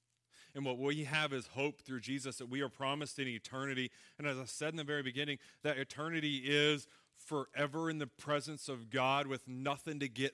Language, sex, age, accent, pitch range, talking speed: English, male, 30-49, American, 120-150 Hz, 205 wpm